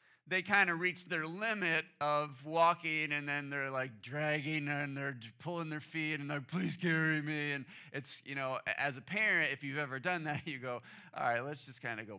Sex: male